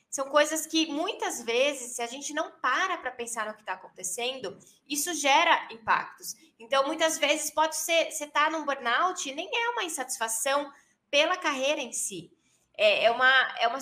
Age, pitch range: 20-39, 235-300 Hz